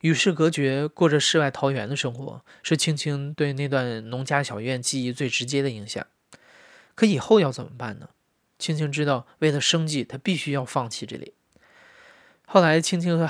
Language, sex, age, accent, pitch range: Chinese, male, 20-39, native, 130-155 Hz